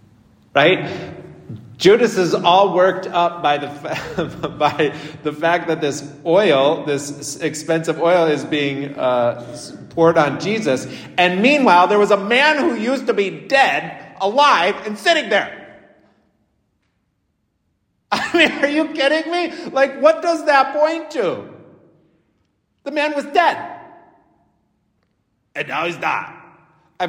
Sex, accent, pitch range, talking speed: male, American, 160-255 Hz, 135 wpm